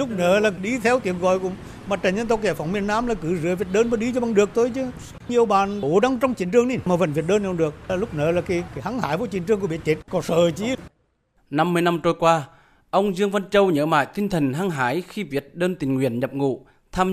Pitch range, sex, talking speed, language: 140-185 Hz, male, 285 wpm, Vietnamese